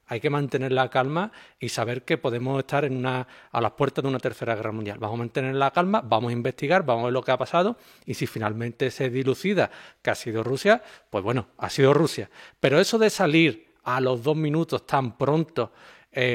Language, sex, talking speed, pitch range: Spanish, male, 215 wpm, 125-160 Hz